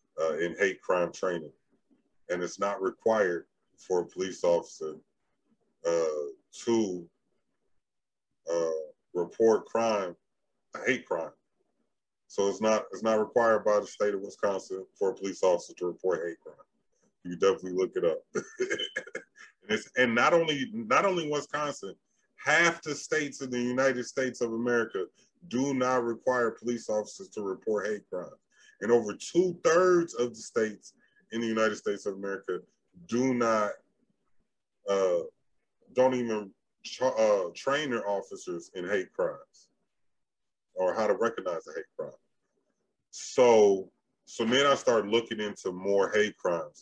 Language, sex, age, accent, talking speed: English, male, 30-49, American, 145 wpm